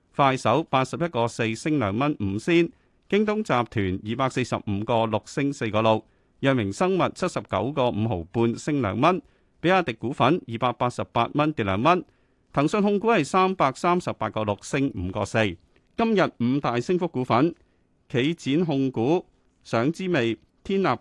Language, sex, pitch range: Chinese, male, 105-155 Hz